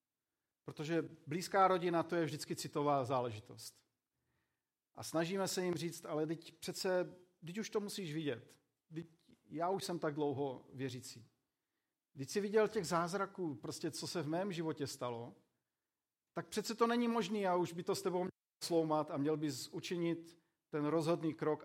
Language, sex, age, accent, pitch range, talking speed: Czech, male, 40-59, native, 140-185 Hz, 165 wpm